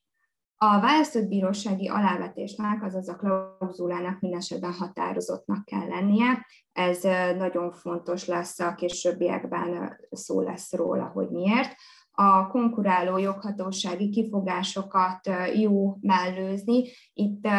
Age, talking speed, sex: 20-39, 100 wpm, female